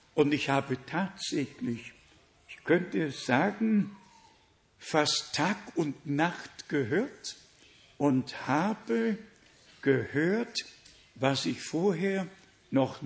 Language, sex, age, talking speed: German, male, 60-79, 85 wpm